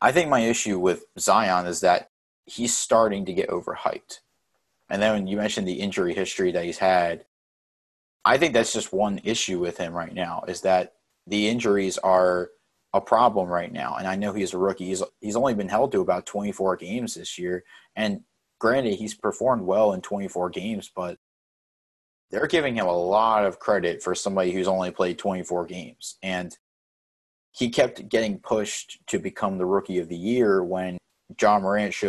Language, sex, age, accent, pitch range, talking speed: English, male, 30-49, American, 90-105 Hz, 185 wpm